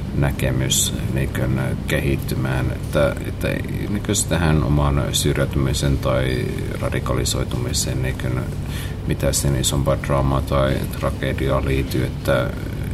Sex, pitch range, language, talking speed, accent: male, 70-90 Hz, Finnish, 90 wpm, native